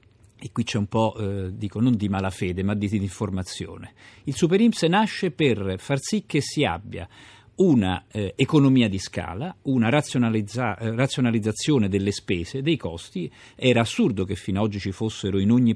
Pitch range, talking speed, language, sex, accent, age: 100-140 Hz, 170 wpm, Italian, male, native, 50-69